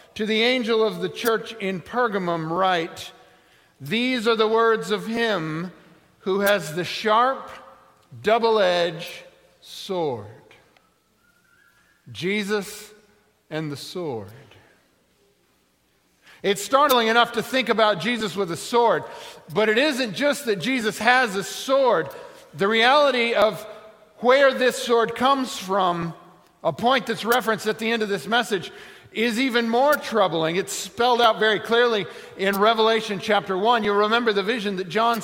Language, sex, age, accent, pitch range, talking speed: English, male, 50-69, American, 185-230 Hz, 140 wpm